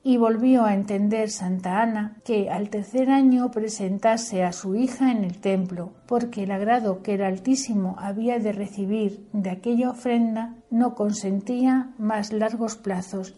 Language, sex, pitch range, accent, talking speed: Spanish, female, 195-240 Hz, Spanish, 150 wpm